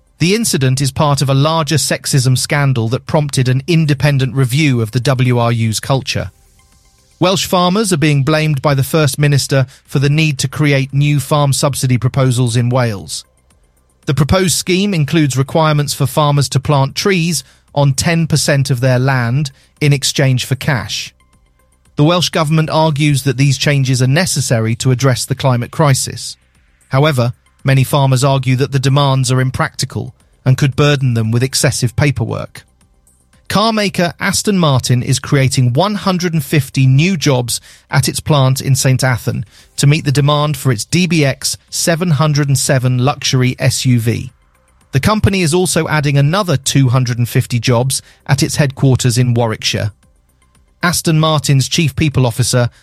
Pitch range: 125-150 Hz